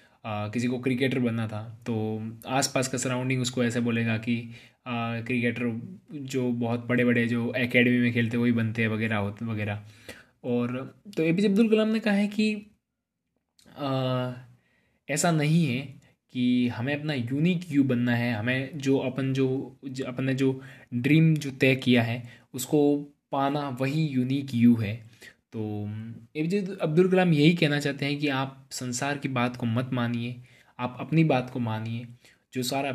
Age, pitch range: 20-39, 120-140 Hz